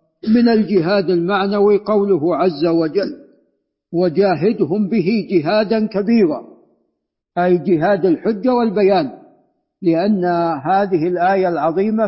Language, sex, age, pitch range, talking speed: Arabic, male, 50-69, 160-200 Hz, 90 wpm